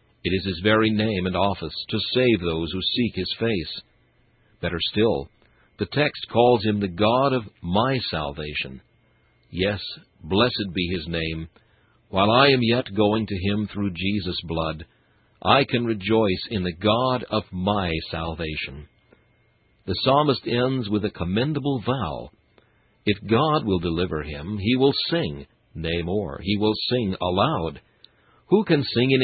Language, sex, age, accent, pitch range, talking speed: English, male, 60-79, American, 90-120 Hz, 150 wpm